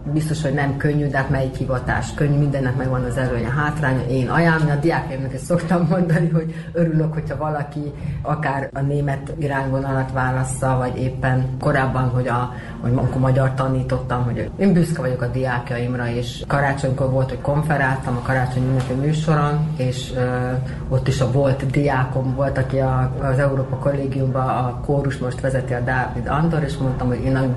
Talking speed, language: 170 wpm, Hungarian